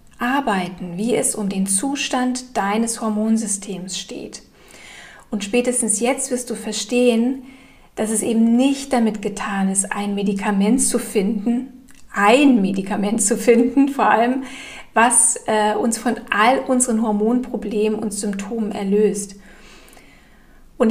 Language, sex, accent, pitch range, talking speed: German, female, German, 210-250 Hz, 125 wpm